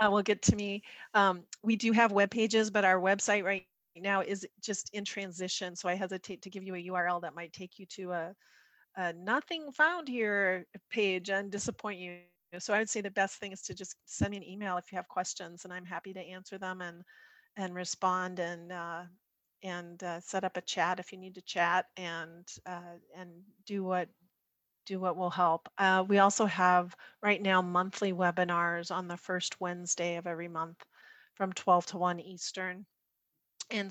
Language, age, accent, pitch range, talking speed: English, 40-59, American, 180-205 Hz, 195 wpm